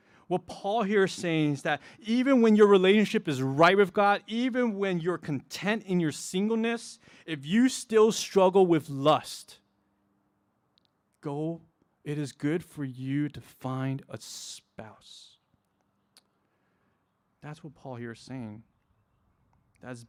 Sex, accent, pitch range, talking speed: male, American, 125-200 Hz, 135 wpm